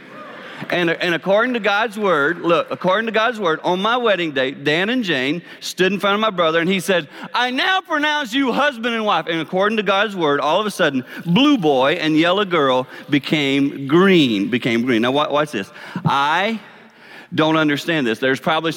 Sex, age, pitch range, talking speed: male, 40-59, 135-205 Hz, 195 wpm